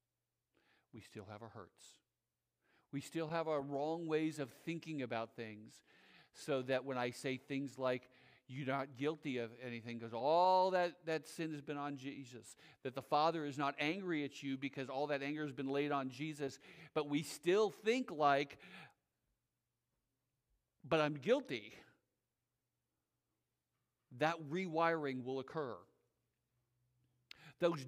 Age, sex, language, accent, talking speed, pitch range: 50-69, male, English, American, 140 wpm, 125-160 Hz